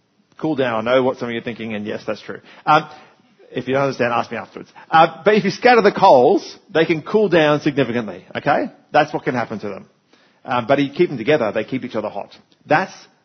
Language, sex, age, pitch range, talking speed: English, male, 40-59, 120-150 Hz, 245 wpm